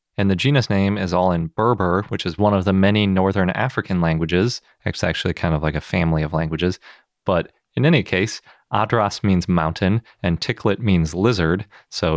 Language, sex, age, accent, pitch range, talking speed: English, male, 30-49, American, 85-105 Hz, 185 wpm